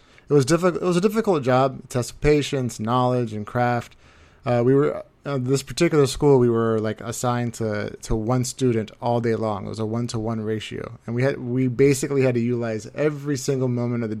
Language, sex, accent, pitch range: English, male, American, 110-125 Hz